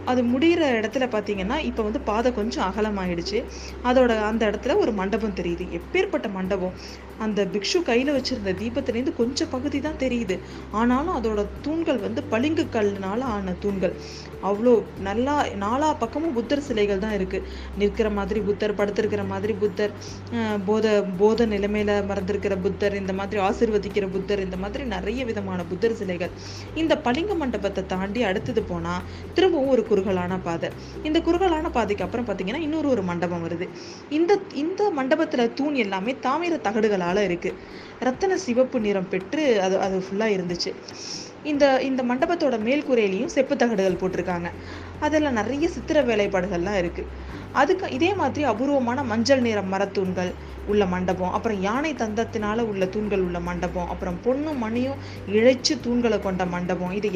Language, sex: Tamil, female